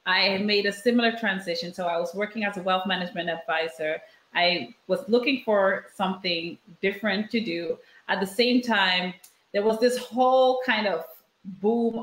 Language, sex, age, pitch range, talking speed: English, female, 30-49, 185-235 Hz, 165 wpm